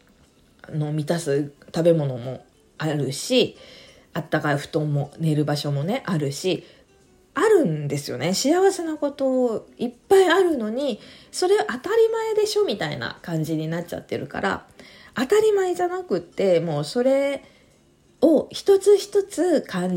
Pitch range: 160-270 Hz